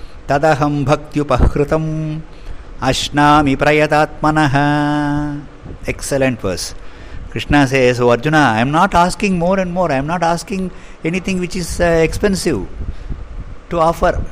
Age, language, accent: 50-69, English, Indian